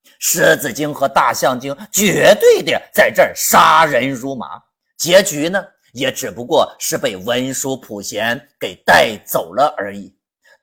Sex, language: male, Chinese